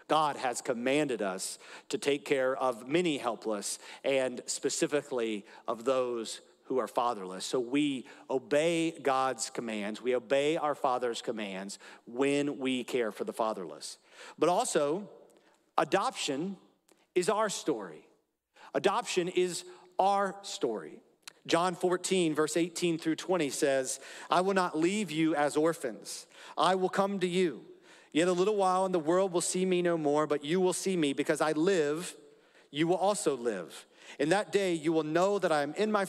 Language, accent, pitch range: English, American, 145-195 Hz